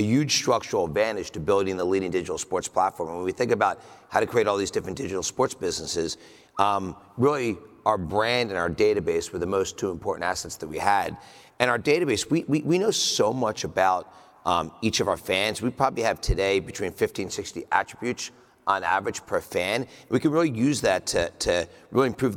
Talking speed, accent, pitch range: 205 wpm, American, 100-135 Hz